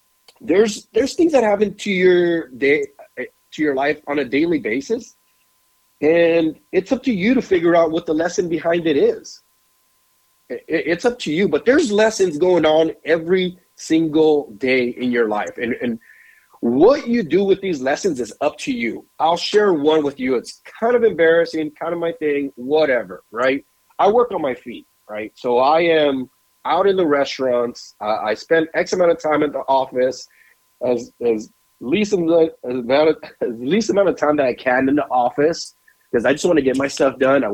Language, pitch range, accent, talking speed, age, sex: English, 125-180 Hz, American, 190 wpm, 30-49, male